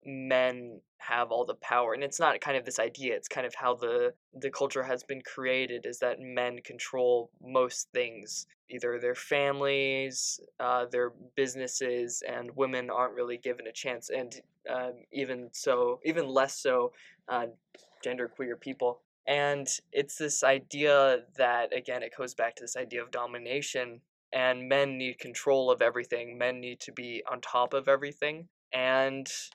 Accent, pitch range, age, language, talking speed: American, 125-150 Hz, 20-39, English, 165 wpm